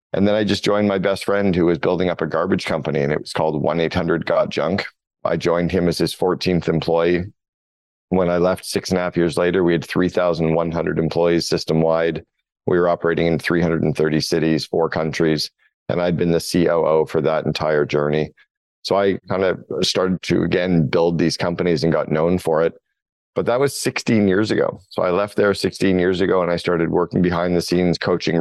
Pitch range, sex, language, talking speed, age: 80-95 Hz, male, English, 200 wpm, 40-59